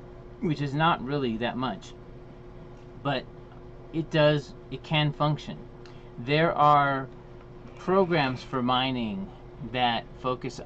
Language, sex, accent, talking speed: English, male, American, 105 wpm